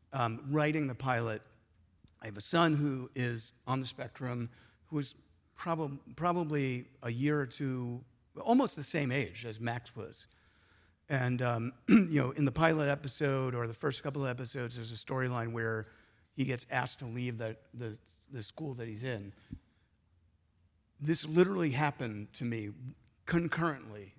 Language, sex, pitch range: English, male, 110-140 Hz